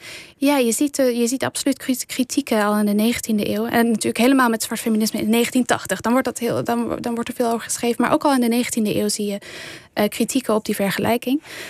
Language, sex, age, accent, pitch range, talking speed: Dutch, female, 10-29, Dutch, 205-235 Hz, 230 wpm